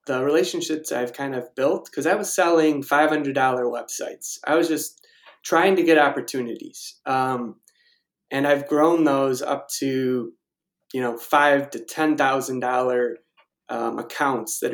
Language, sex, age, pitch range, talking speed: English, male, 20-39, 130-160 Hz, 150 wpm